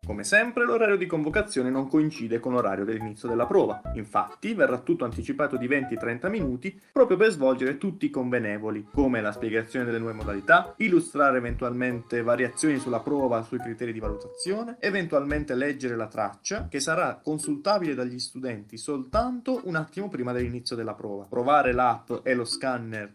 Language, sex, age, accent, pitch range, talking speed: Italian, male, 20-39, native, 120-160 Hz, 160 wpm